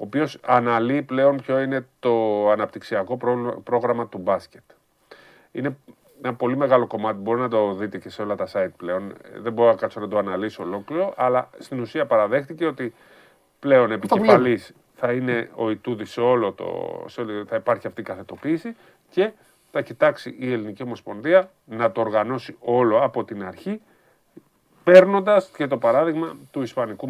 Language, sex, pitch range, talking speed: Greek, male, 110-140 Hz, 155 wpm